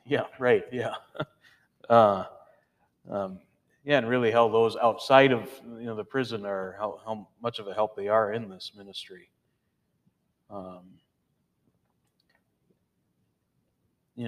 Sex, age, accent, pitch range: male, 30-49, American, 105-130 Hz